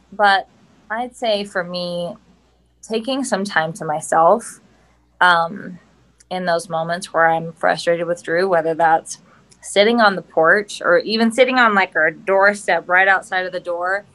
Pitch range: 170-215 Hz